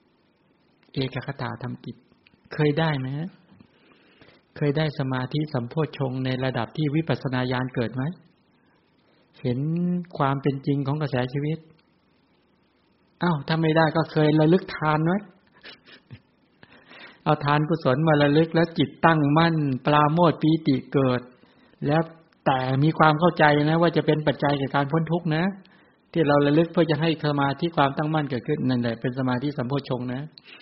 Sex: male